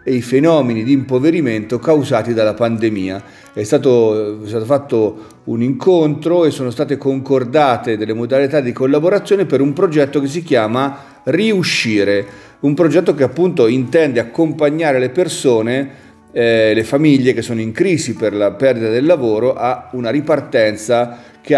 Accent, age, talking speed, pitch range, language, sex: native, 40-59, 150 wpm, 115-145 Hz, Italian, male